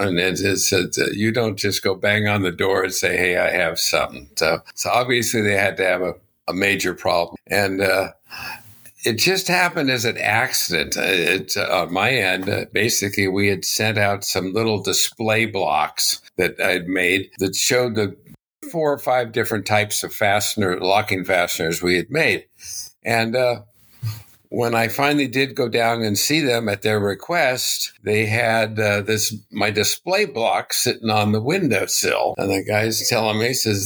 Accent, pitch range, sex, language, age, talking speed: American, 100-120 Hz, male, English, 60-79, 175 wpm